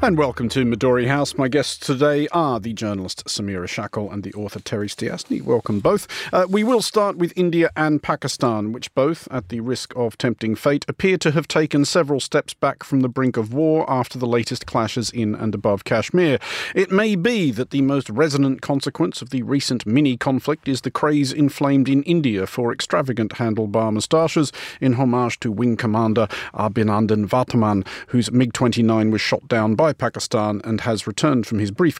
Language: English